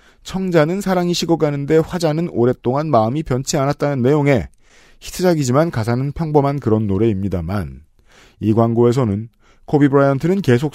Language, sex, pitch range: Korean, male, 110-150 Hz